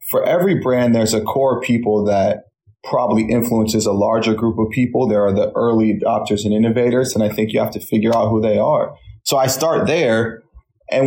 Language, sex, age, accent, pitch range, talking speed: English, male, 30-49, American, 110-135 Hz, 205 wpm